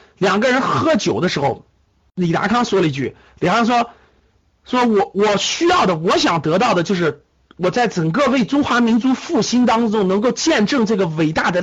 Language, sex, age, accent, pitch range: Chinese, male, 50-69, native, 175-250 Hz